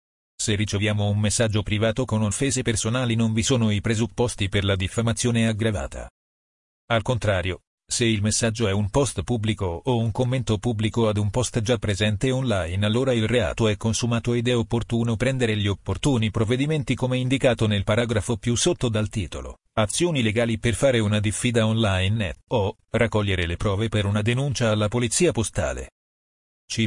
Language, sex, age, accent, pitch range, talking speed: Italian, male, 40-59, native, 105-120 Hz, 165 wpm